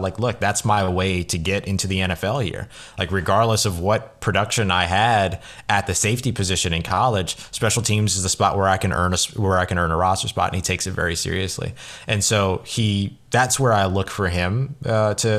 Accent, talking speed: American, 225 wpm